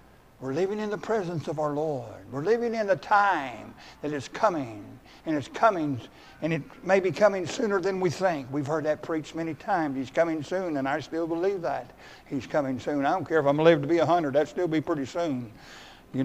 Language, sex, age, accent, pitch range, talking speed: English, male, 60-79, American, 120-160 Hz, 220 wpm